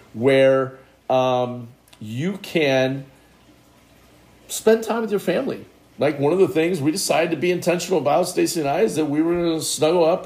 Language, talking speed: English, 180 wpm